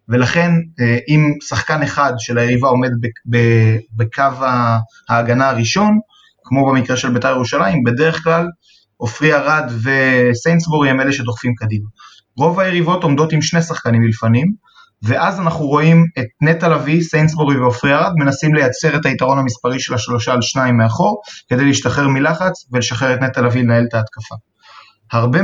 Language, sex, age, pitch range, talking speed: Hebrew, male, 20-39, 120-155 Hz, 150 wpm